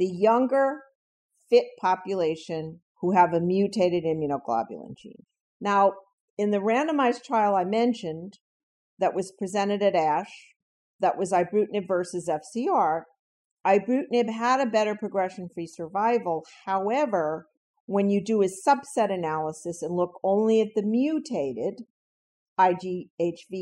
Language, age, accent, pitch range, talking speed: English, 50-69, American, 165-225 Hz, 120 wpm